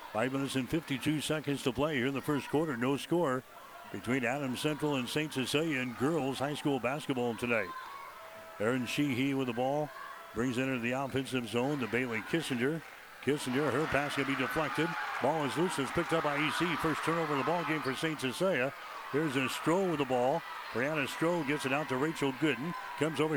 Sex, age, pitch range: male, 60-79, 130-155 Hz